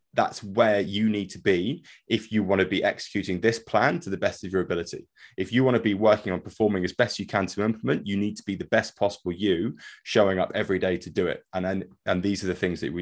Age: 20-39